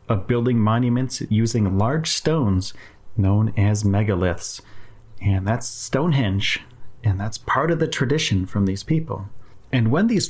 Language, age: English, 40-59